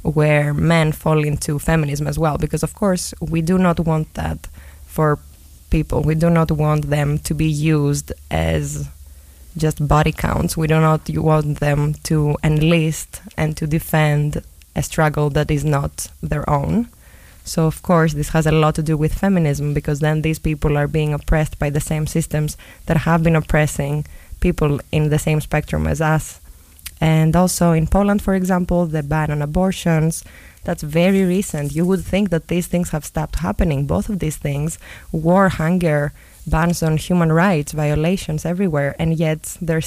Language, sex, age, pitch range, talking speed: English, female, 20-39, 150-170 Hz, 175 wpm